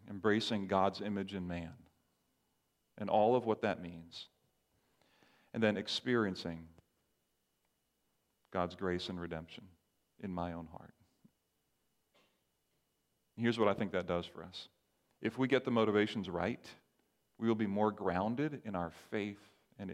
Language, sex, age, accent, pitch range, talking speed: English, male, 40-59, American, 95-115 Hz, 135 wpm